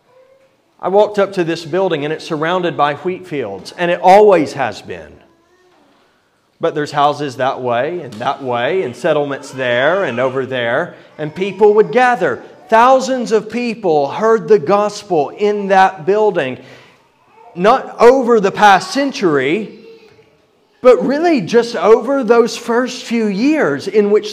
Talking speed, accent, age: 145 wpm, American, 30-49